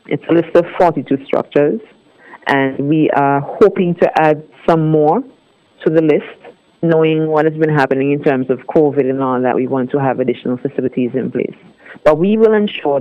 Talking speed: 190 wpm